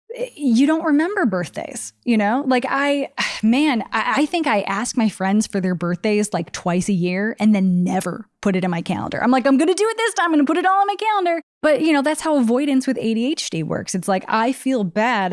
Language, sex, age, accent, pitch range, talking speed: English, female, 10-29, American, 185-255 Hz, 240 wpm